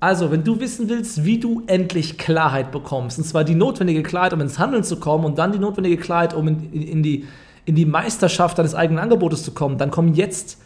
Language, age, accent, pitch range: German, 40-59, German, 140-175 Hz